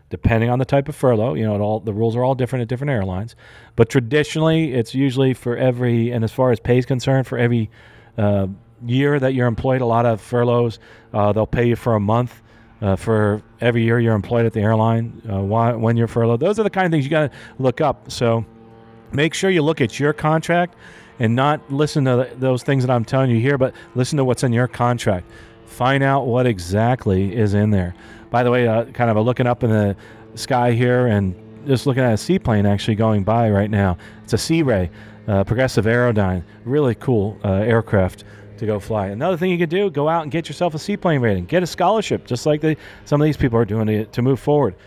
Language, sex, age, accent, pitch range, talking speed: English, male, 40-59, American, 110-135 Hz, 235 wpm